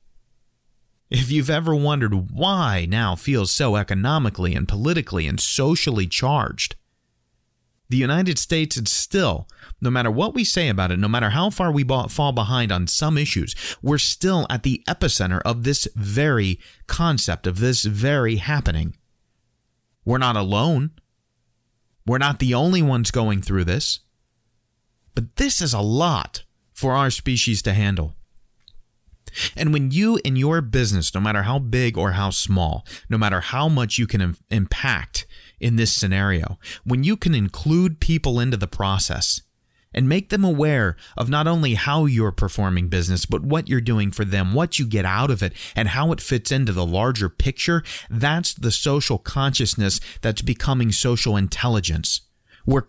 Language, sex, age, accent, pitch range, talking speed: English, male, 30-49, American, 100-140 Hz, 160 wpm